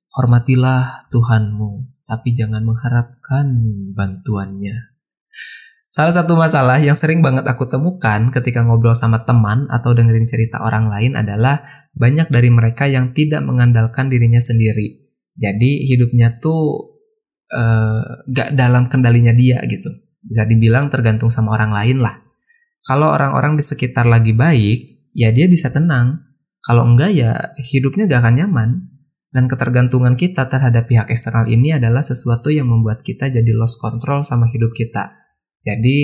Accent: native